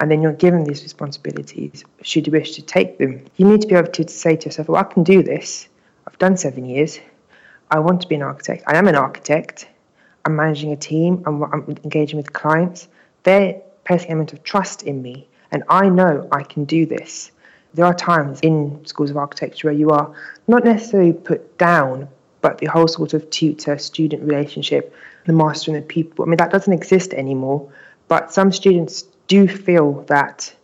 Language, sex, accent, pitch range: English, female, British, 145-175 Hz